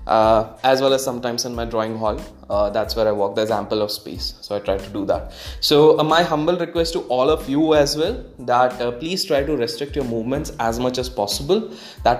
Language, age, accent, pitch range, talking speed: English, 20-39, Indian, 115-150 Hz, 235 wpm